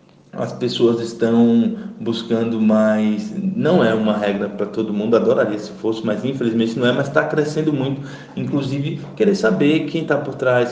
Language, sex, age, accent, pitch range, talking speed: Portuguese, male, 20-39, Brazilian, 110-150 Hz, 170 wpm